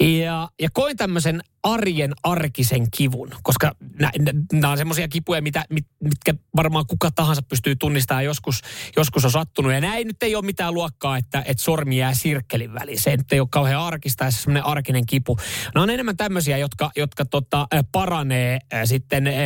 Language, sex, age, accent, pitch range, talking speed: Finnish, male, 30-49, native, 125-165 Hz, 175 wpm